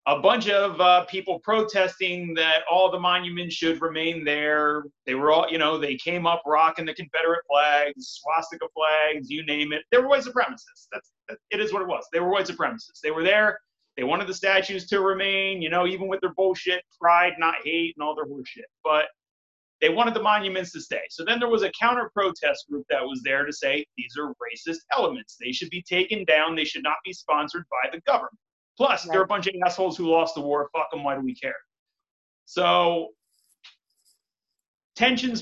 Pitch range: 155-195 Hz